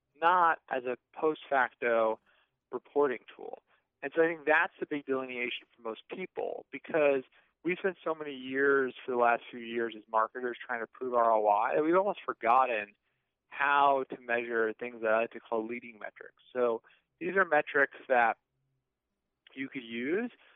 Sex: male